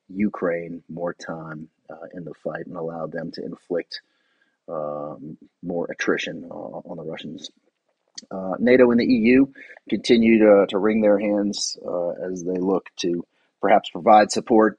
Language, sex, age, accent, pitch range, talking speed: English, male, 40-59, American, 85-105 Hz, 155 wpm